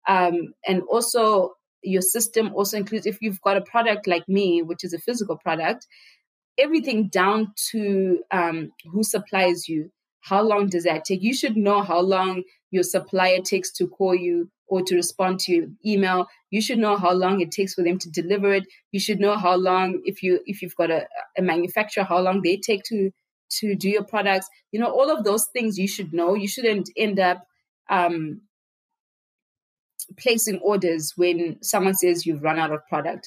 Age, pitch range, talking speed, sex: 20-39, 175-205 Hz, 190 wpm, female